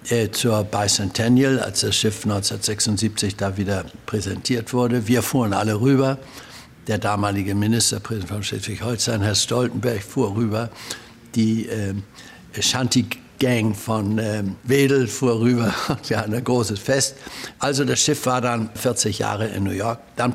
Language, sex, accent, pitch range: German, male, German, 105-125 Hz